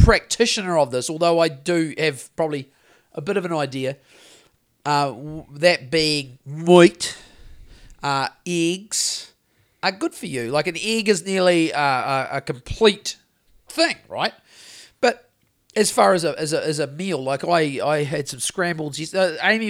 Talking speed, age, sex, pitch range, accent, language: 155 wpm, 40-59, male, 135-180 Hz, Australian, English